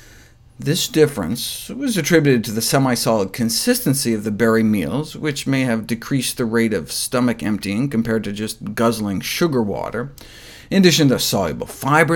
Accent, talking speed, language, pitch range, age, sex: American, 160 wpm, English, 120-155 Hz, 50-69, male